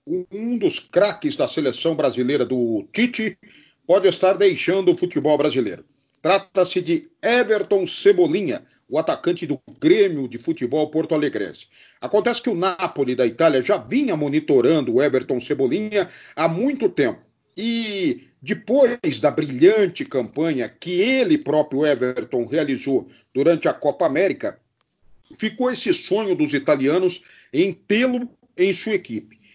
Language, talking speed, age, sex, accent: Portuguese, 130 wpm, 50-69, male, Brazilian